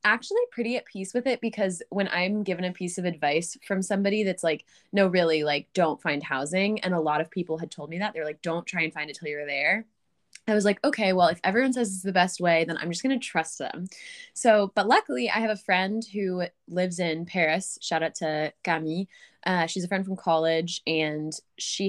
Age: 20-39